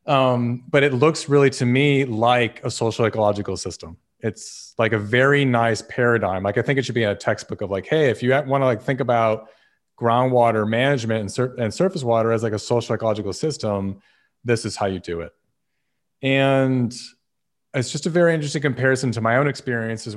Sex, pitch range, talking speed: male, 105-130 Hz, 195 wpm